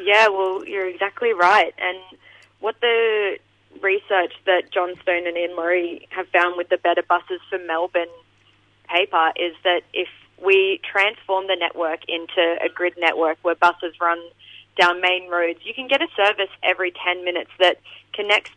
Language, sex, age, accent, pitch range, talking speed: English, female, 20-39, Australian, 170-190 Hz, 165 wpm